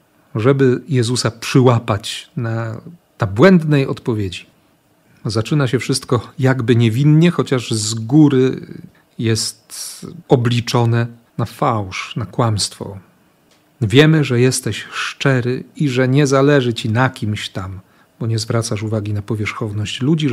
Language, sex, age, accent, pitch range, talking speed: Polish, male, 40-59, native, 115-150 Hz, 120 wpm